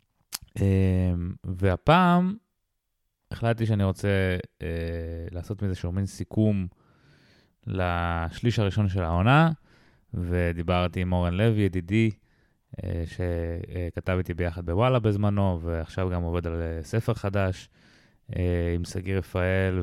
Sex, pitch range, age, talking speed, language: male, 90-110 Hz, 20-39, 110 wpm, Hebrew